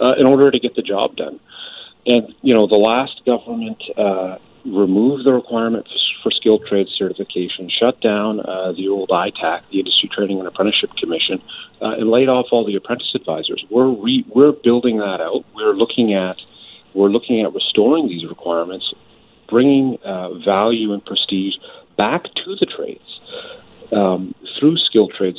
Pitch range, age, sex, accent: 100-150 Hz, 40-59, male, American